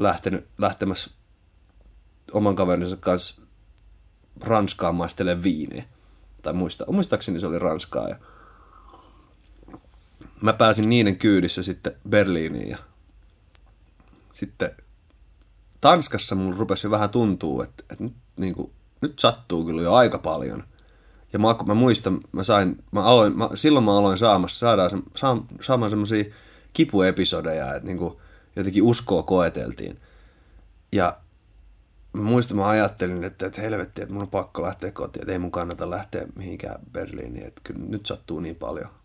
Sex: male